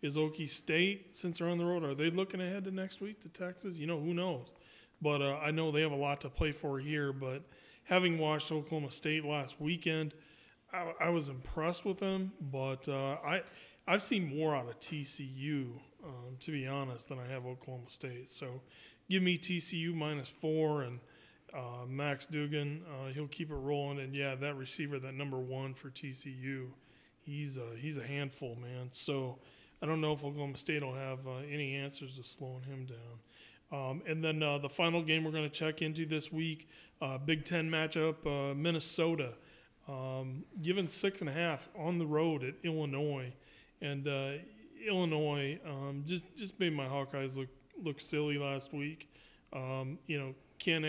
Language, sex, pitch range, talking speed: English, male, 135-160 Hz, 190 wpm